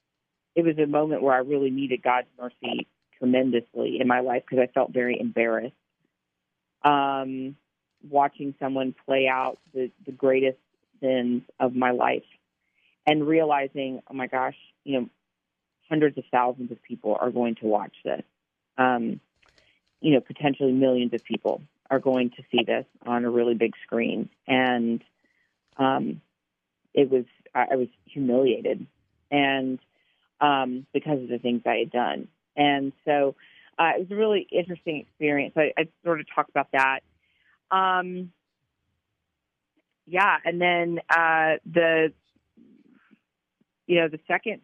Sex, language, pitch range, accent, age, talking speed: female, English, 125-155 Hz, American, 40-59, 145 wpm